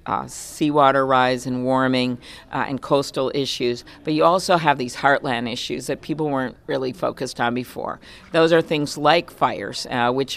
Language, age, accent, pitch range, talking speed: English, 50-69, American, 125-145 Hz, 175 wpm